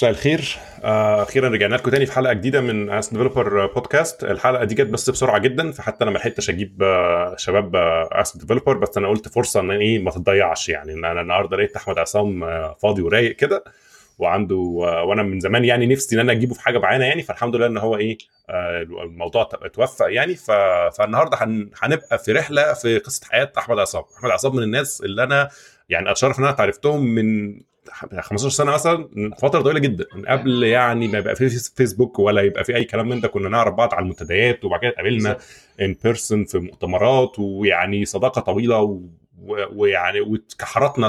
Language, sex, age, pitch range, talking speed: Arabic, male, 20-39, 100-130 Hz, 185 wpm